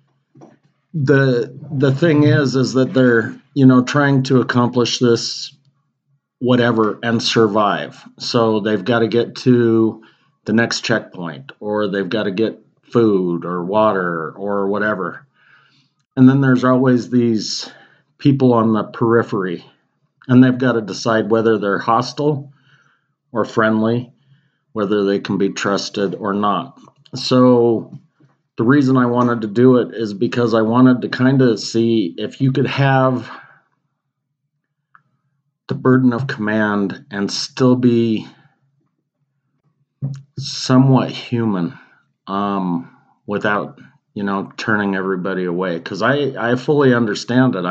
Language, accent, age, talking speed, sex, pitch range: English, American, 50-69, 130 wpm, male, 110-135 Hz